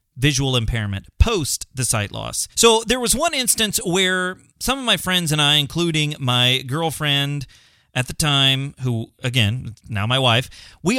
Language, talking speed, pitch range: English, 165 wpm, 125-195 Hz